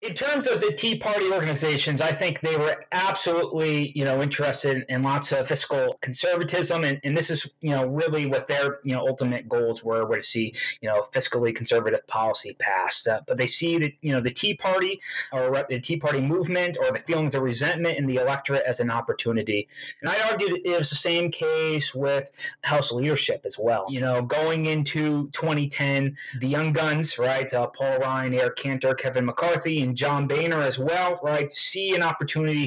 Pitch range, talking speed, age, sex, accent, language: 130-170 Hz, 200 wpm, 30-49, male, American, English